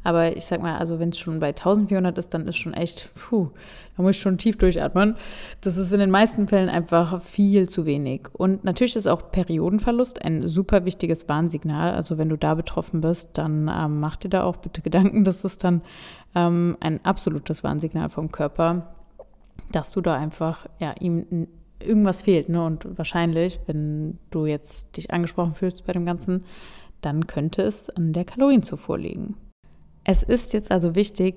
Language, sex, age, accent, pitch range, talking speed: German, female, 20-39, German, 170-200 Hz, 180 wpm